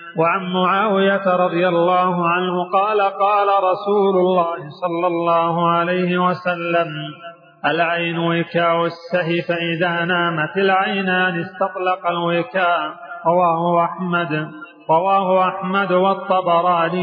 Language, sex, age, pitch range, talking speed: Arabic, male, 40-59, 170-185 Hz, 85 wpm